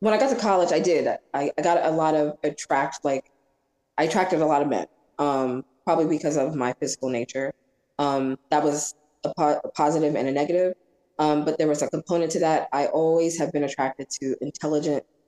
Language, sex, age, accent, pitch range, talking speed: English, female, 20-39, American, 130-150 Hz, 205 wpm